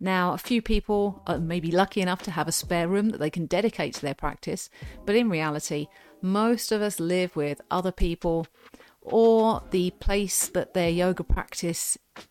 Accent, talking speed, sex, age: British, 180 wpm, female, 40-59